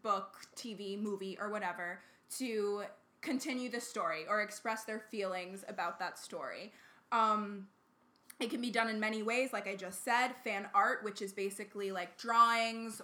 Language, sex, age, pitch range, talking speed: English, female, 20-39, 200-225 Hz, 160 wpm